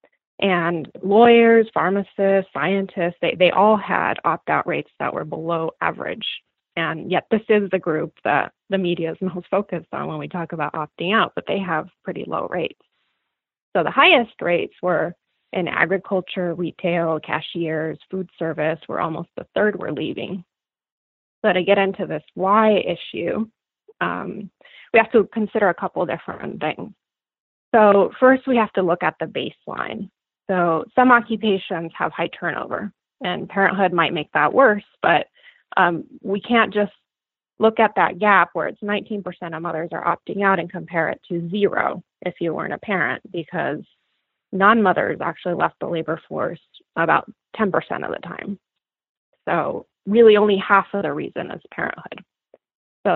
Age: 20-39